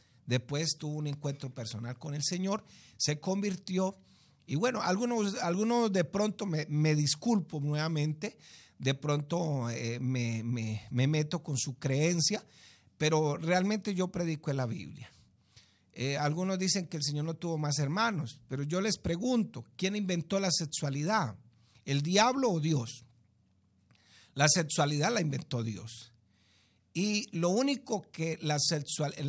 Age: 50-69